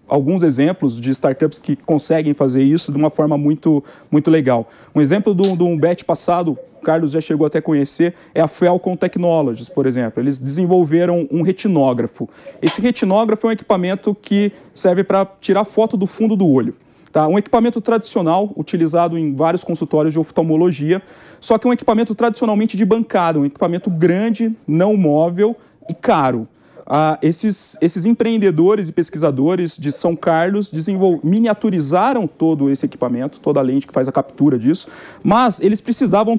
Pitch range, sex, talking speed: 155-210 Hz, male, 165 wpm